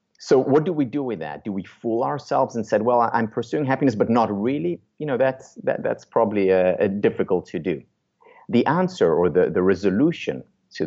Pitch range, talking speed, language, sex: 95-135 Hz, 210 wpm, English, male